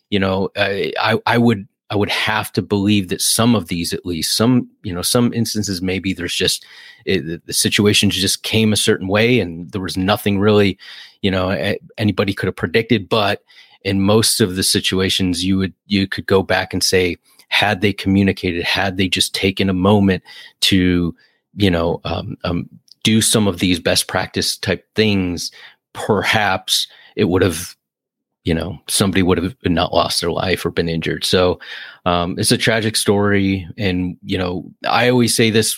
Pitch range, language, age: 95-110 Hz, English, 30-49